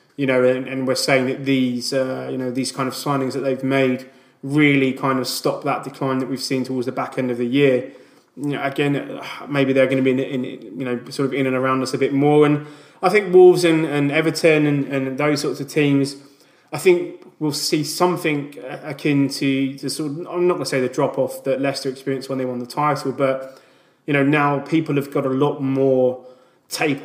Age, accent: 20-39, British